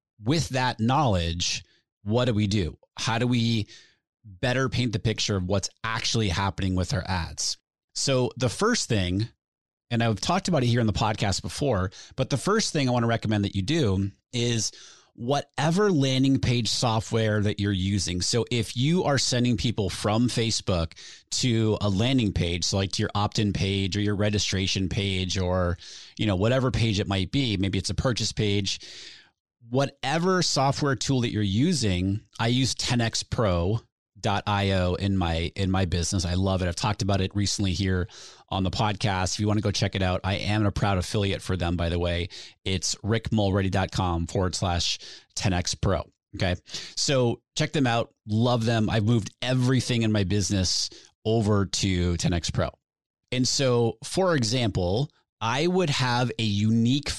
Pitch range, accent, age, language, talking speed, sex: 95-125 Hz, American, 30-49, English, 170 wpm, male